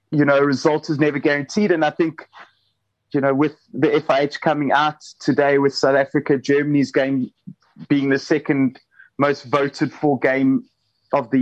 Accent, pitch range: British, 135-180 Hz